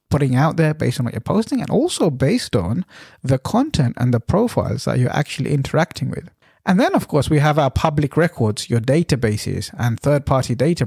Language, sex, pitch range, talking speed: English, male, 120-165 Hz, 205 wpm